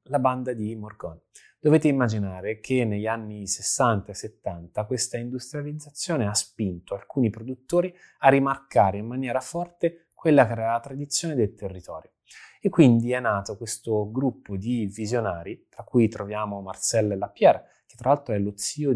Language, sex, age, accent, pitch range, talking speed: Italian, male, 20-39, native, 105-130 Hz, 155 wpm